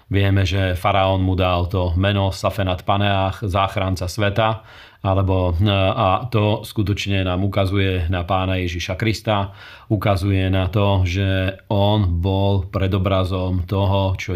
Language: Slovak